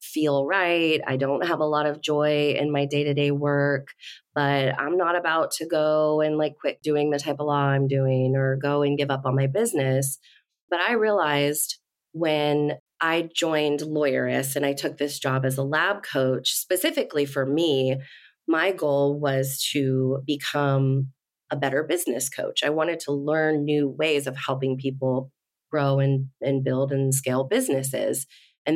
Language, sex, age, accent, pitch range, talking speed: English, female, 30-49, American, 135-155 Hz, 170 wpm